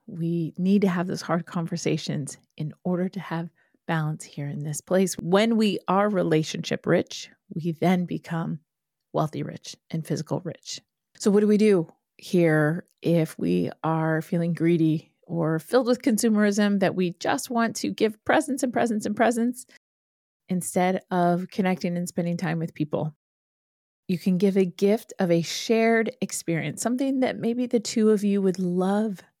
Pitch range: 165-210 Hz